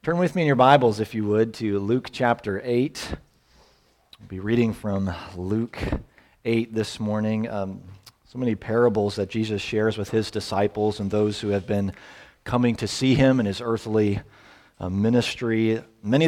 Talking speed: 170 wpm